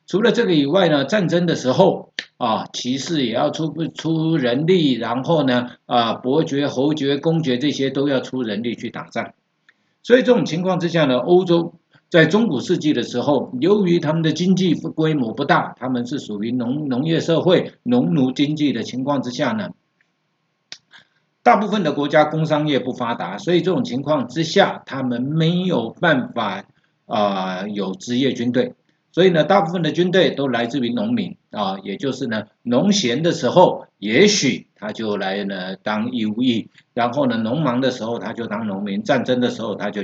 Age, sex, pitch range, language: 50-69, male, 125-180 Hz, Chinese